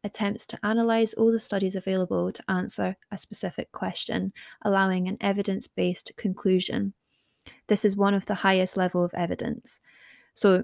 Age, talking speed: 20-39, 145 wpm